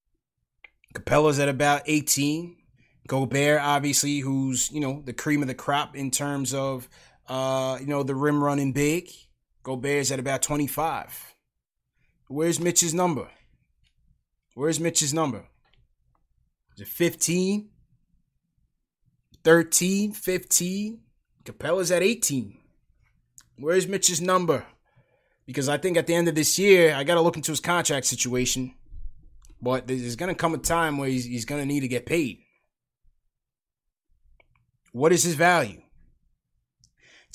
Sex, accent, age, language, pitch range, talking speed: male, American, 20-39, English, 130-165 Hz, 130 wpm